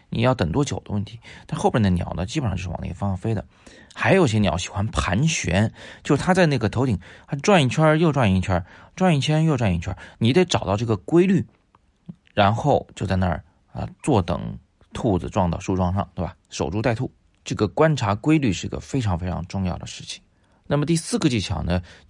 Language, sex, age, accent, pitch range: Chinese, male, 30-49, native, 90-115 Hz